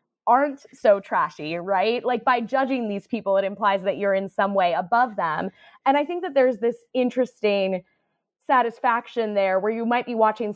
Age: 20-39